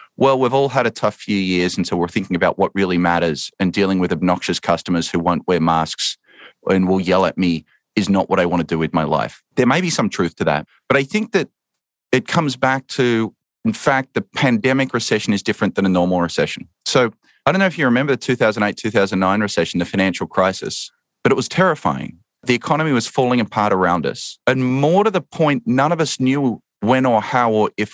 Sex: male